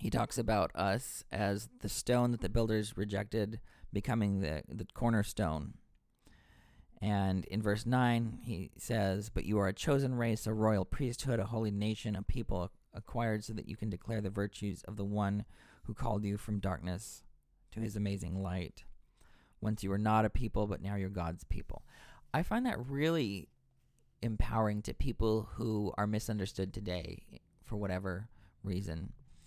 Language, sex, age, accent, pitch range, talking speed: English, male, 40-59, American, 95-115 Hz, 165 wpm